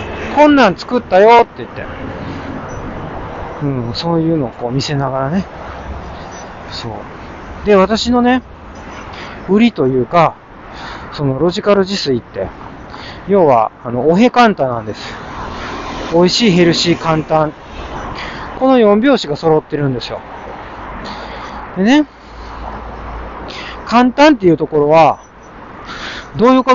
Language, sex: Japanese, male